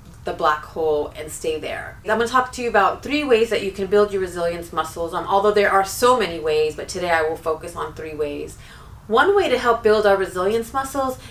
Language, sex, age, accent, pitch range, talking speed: English, female, 30-49, American, 175-205 Hz, 240 wpm